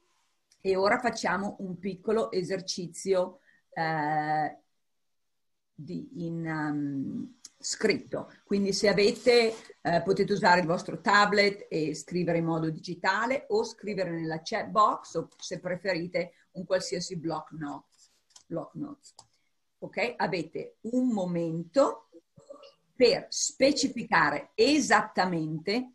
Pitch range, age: 175-210 Hz, 40-59